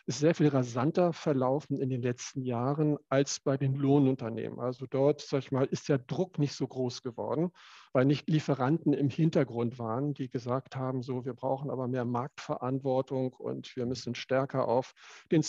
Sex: male